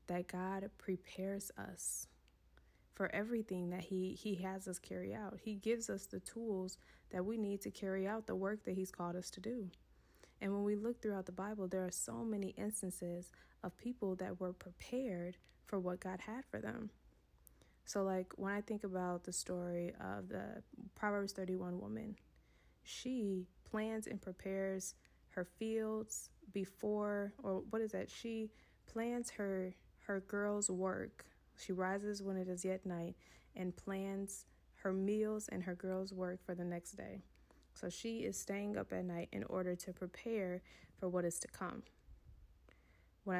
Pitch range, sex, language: 180-205 Hz, female, English